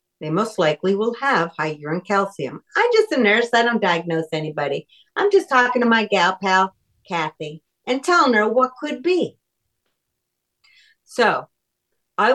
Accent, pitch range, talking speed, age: American, 185-265 Hz, 155 wpm, 50-69